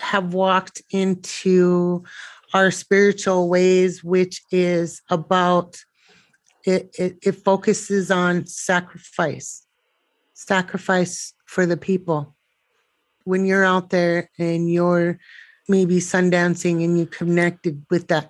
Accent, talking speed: American, 110 wpm